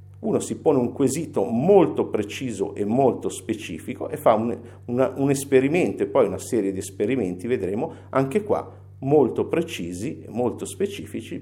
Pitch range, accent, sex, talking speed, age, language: 110-170 Hz, native, male, 160 wpm, 50-69, Italian